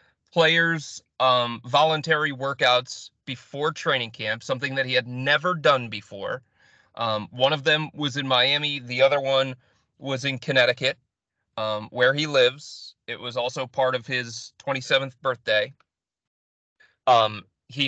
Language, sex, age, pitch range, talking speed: English, male, 30-49, 115-140 Hz, 140 wpm